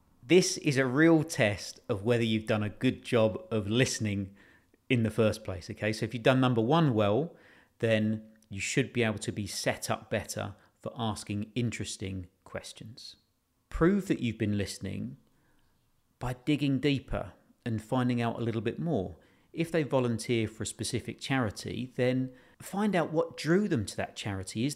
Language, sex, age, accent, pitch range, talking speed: English, male, 40-59, British, 105-140 Hz, 175 wpm